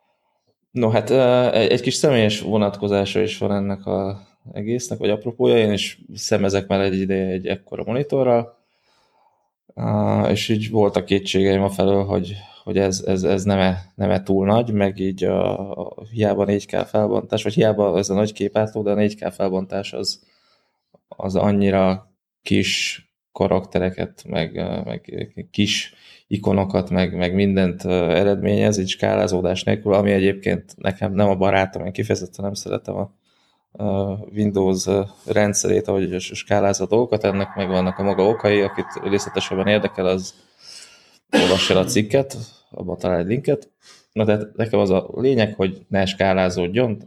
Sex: male